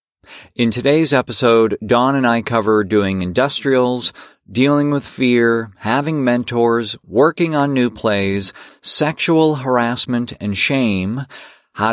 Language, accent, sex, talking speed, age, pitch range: English, American, male, 115 wpm, 50-69, 115-145 Hz